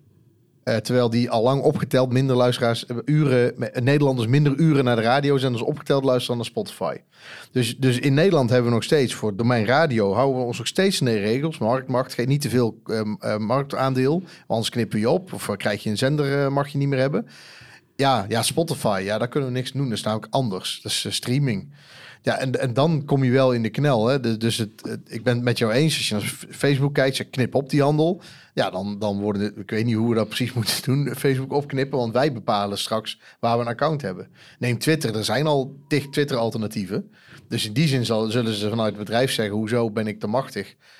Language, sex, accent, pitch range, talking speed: Dutch, male, Dutch, 110-140 Hz, 235 wpm